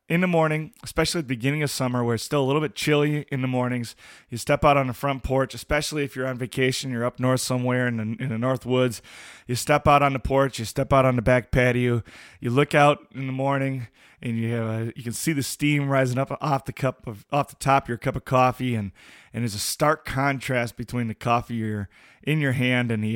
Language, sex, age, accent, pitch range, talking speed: English, male, 20-39, American, 120-140 Hz, 255 wpm